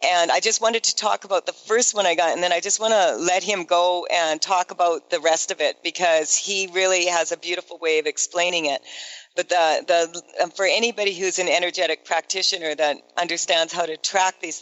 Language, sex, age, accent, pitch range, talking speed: English, female, 50-69, American, 165-195 Hz, 220 wpm